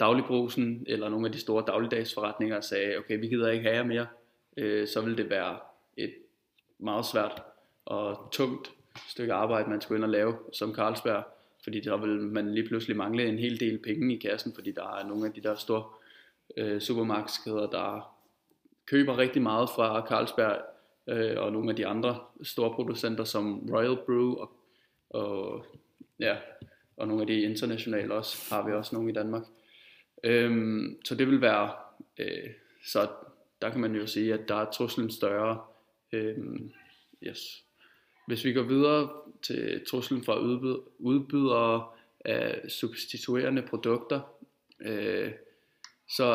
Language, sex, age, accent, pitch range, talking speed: Danish, male, 20-39, native, 110-125 Hz, 150 wpm